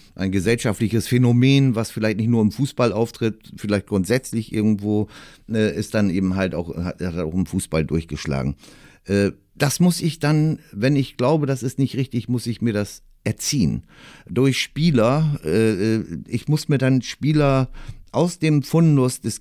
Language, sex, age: German, male, 60-79